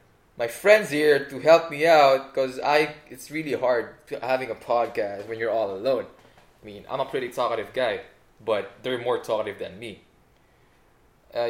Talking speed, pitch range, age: 170 wpm, 125-175 Hz, 20-39